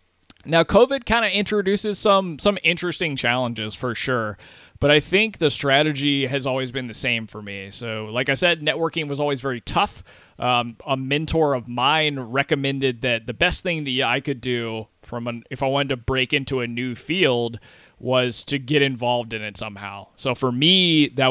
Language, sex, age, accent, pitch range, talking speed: English, male, 20-39, American, 115-145 Hz, 190 wpm